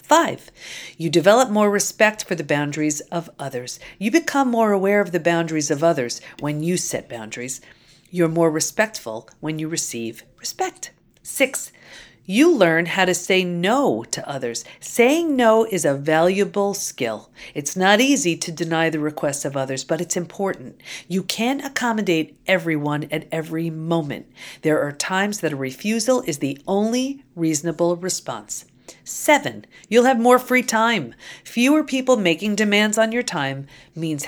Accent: American